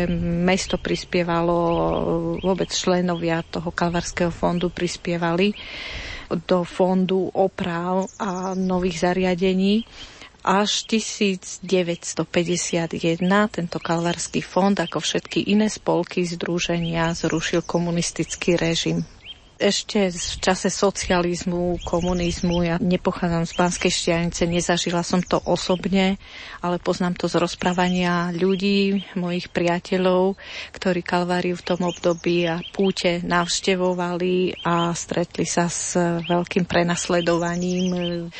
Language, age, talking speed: Slovak, 40-59, 100 wpm